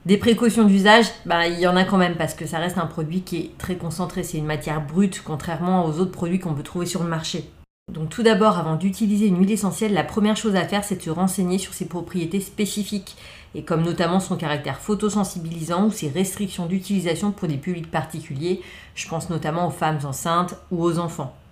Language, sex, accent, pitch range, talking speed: French, female, French, 165-205 Hz, 220 wpm